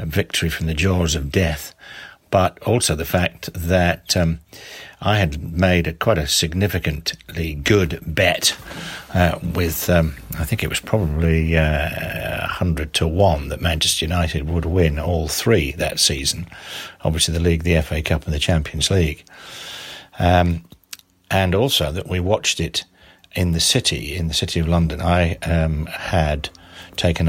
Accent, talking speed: British, 150 wpm